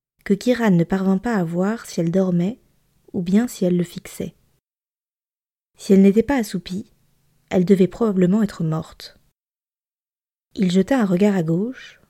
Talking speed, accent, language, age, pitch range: 160 wpm, French, French, 20-39, 175-210 Hz